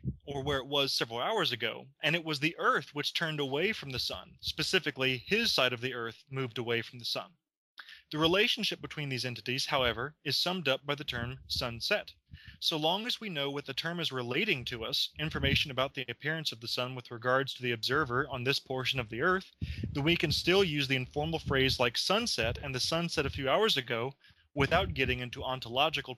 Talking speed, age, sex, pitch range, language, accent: 215 wpm, 20-39, male, 125-160 Hz, English, American